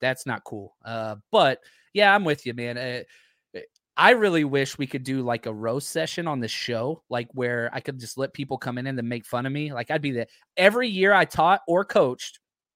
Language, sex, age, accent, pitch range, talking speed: English, male, 20-39, American, 120-170 Hz, 225 wpm